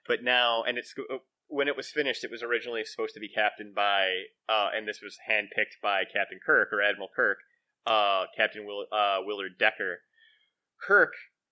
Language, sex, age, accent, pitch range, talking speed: English, male, 30-49, American, 110-145 Hz, 175 wpm